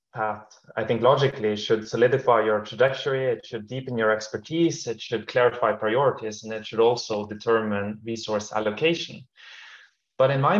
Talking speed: 155 wpm